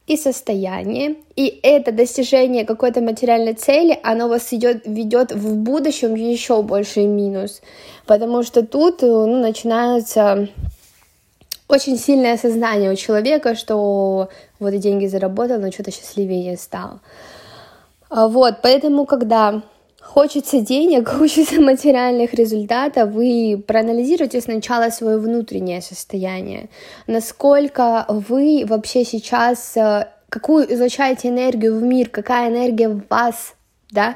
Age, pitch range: 20-39, 205-245 Hz